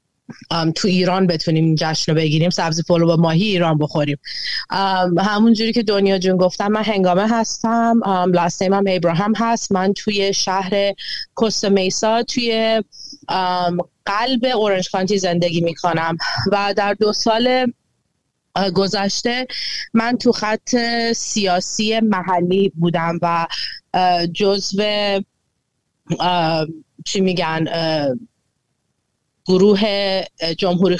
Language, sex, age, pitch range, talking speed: Persian, female, 30-49, 175-215 Hz, 120 wpm